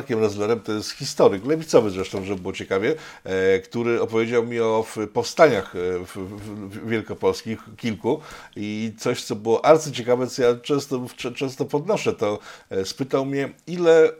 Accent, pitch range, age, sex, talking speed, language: native, 110-145 Hz, 50-69, male, 135 wpm, Polish